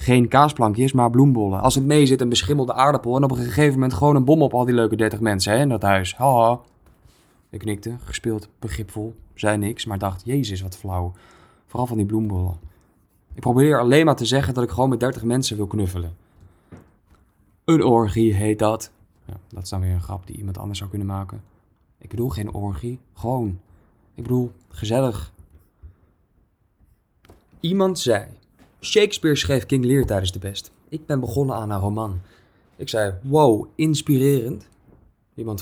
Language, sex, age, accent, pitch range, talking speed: Dutch, male, 20-39, Dutch, 100-130 Hz, 175 wpm